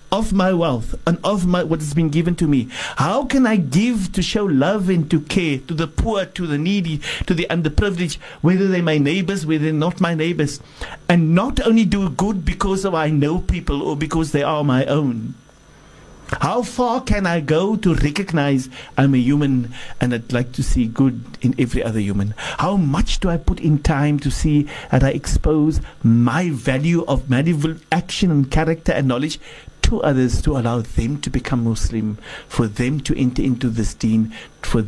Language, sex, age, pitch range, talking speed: English, male, 60-79, 115-160 Hz, 195 wpm